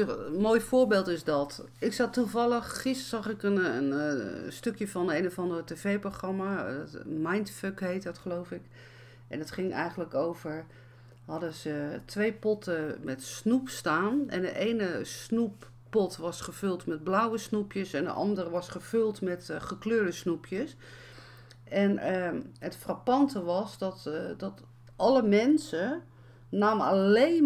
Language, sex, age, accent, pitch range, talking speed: Dutch, female, 50-69, Dutch, 155-210 Hz, 145 wpm